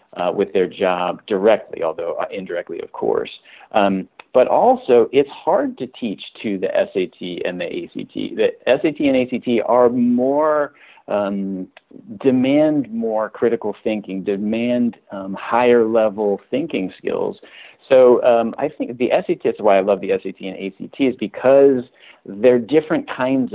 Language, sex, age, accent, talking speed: English, male, 40-59, American, 150 wpm